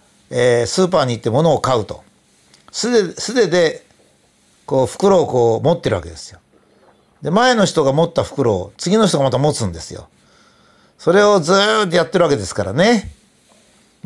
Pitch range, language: 115-165 Hz, Japanese